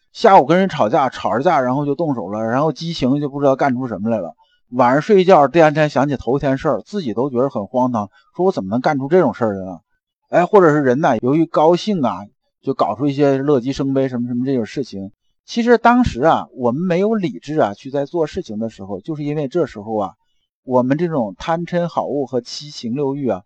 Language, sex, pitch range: Chinese, male, 115-160 Hz